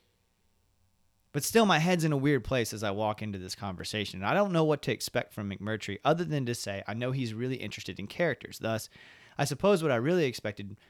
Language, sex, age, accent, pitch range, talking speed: English, male, 30-49, American, 100-135 Hz, 225 wpm